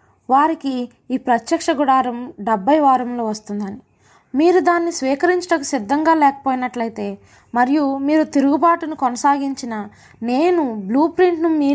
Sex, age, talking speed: female, 20-39, 100 wpm